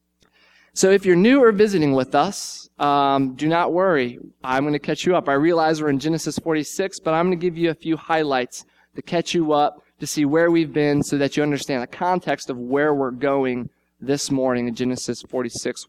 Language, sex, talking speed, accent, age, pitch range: English, male, 215 wpm, American, 20-39, 125-165 Hz